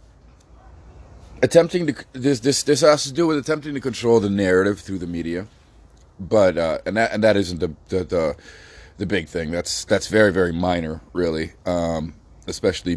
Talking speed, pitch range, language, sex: 175 wpm, 85-110 Hz, English, male